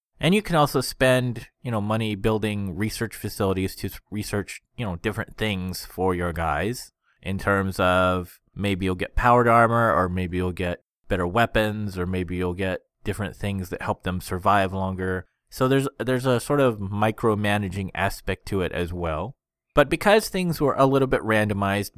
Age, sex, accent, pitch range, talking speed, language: 30-49, male, American, 95-125 Hz, 175 wpm, English